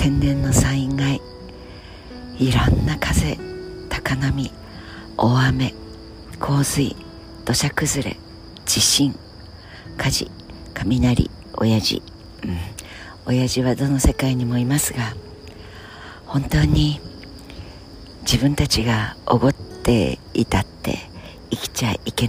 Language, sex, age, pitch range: Japanese, female, 50-69, 85-130 Hz